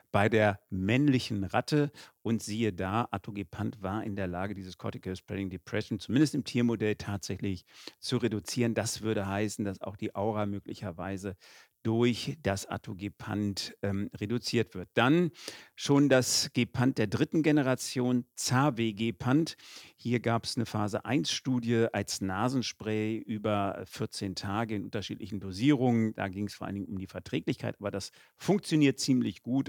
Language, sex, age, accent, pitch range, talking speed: German, male, 50-69, German, 100-125 Hz, 145 wpm